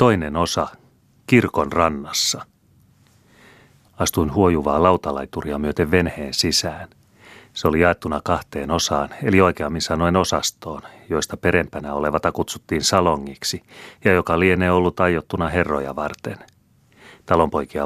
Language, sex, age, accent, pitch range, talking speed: Finnish, male, 30-49, native, 75-90 Hz, 110 wpm